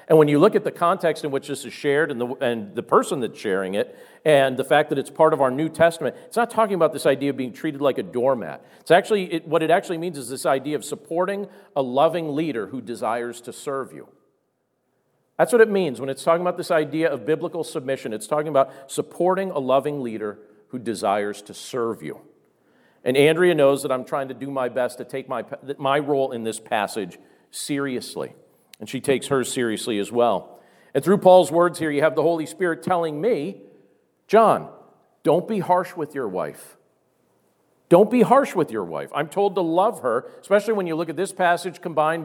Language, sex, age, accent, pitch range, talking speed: English, male, 50-69, American, 130-175 Hz, 215 wpm